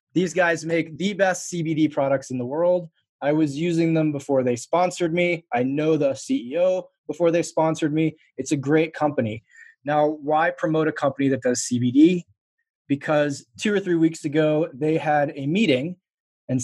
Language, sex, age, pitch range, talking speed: English, male, 20-39, 140-175 Hz, 175 wpm